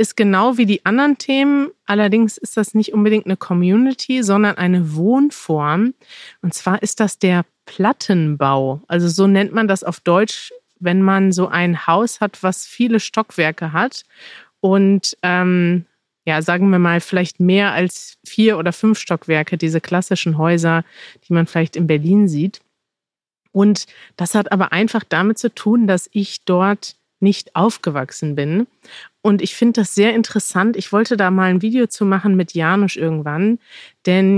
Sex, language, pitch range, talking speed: female, German, 180-215 Hz, 160 wpm